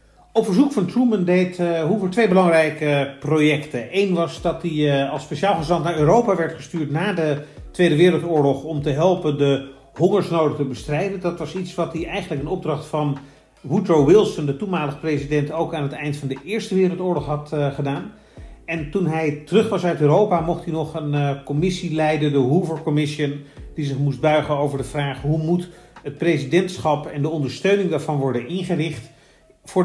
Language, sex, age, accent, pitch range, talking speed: Dutch, male, 40-59, Dutch, 145-175 Hz, 180 wpm